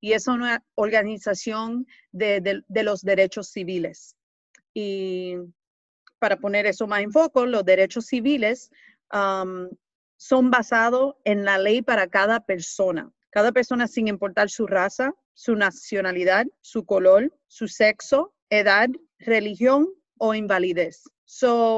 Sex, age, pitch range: female, 40-59, 205-260 Hz